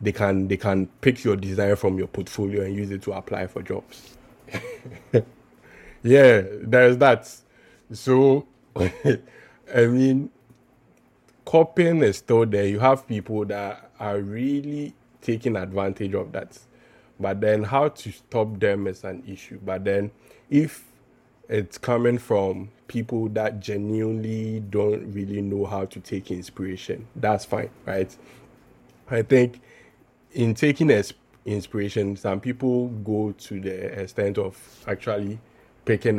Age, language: 20-39, English